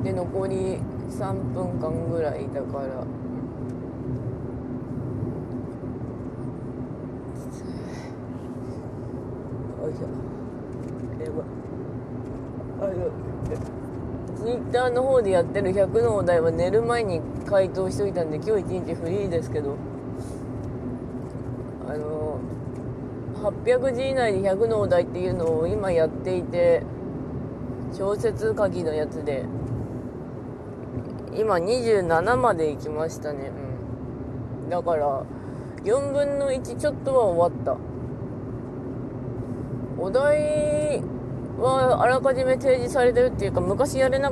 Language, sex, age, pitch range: Japanese, female, 20-39, 125-200 Hz